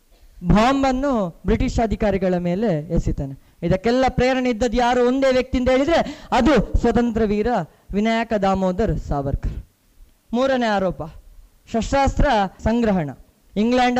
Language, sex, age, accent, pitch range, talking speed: Kannada, female, 20-39, native, 195-275 Hz, 100 wpm